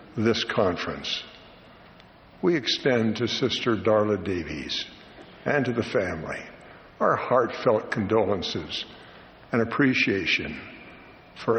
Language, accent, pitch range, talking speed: English, American, 115-140 Hz, 95 wpm